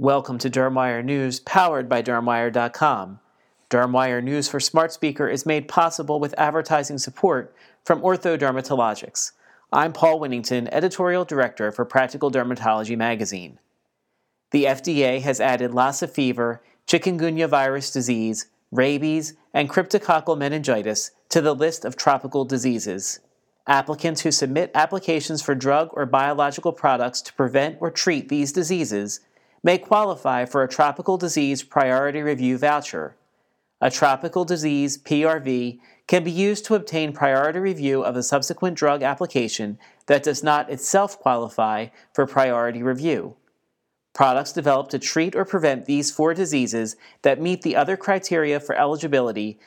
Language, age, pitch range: English, 40-59, 130-160 Hz